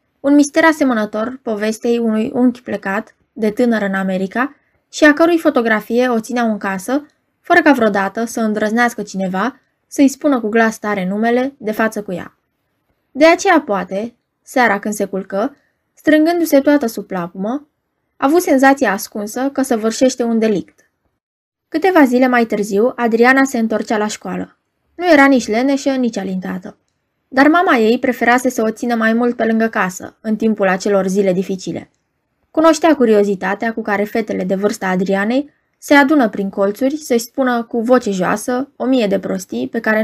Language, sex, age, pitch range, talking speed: Romanian, female, 20-39, 205-270 Hz, 165 wpm